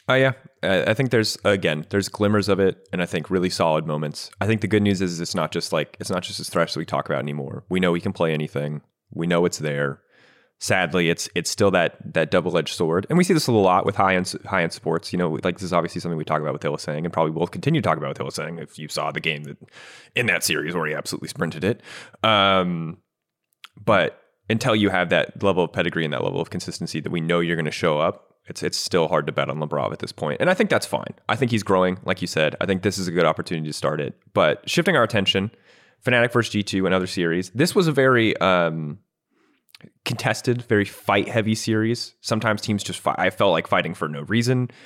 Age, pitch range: 30-49, 80-105 Hz